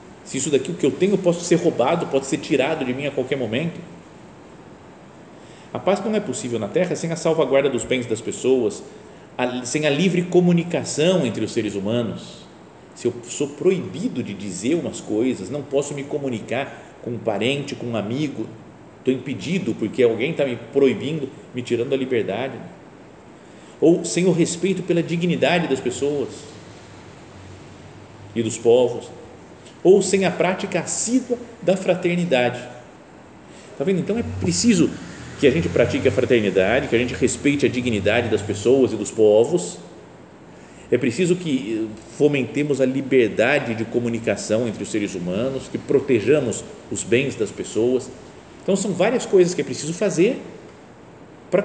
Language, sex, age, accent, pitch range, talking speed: Portuguese, male, 50-69, Brazilian, 125-180 Hz, 160 wpm